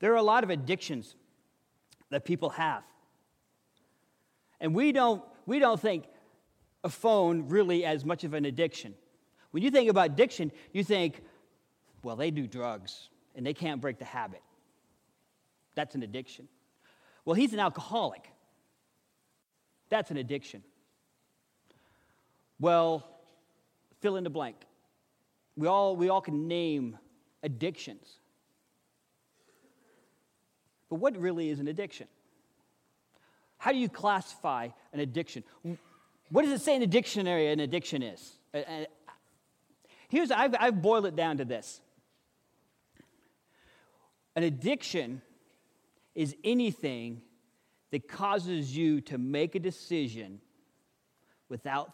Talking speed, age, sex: 120 wpm, 40-59, male